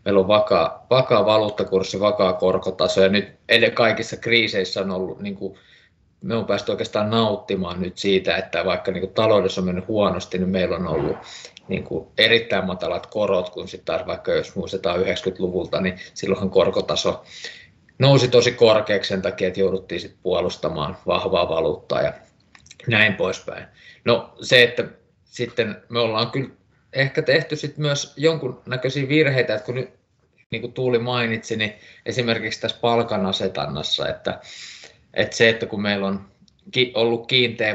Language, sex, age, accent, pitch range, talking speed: Finnish, male, 20-39, native, 95-120 Hz, 145 wpm